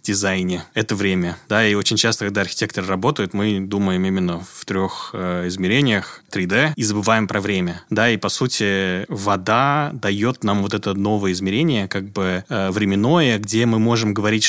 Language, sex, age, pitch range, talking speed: Russian, male, 20-39, 95-110 Hz, 170 wpm